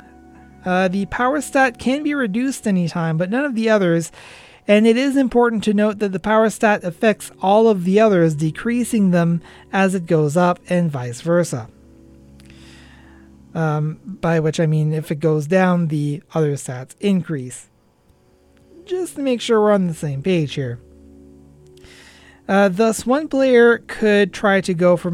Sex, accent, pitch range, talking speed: male, American, 155-220 Hz, 165 wpm